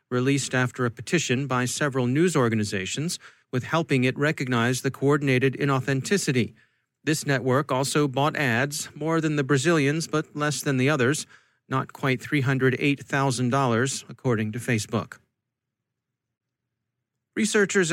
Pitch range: 125-155 Hz